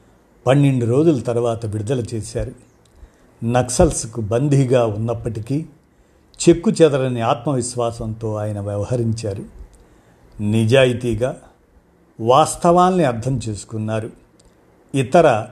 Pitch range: 110-135 Hz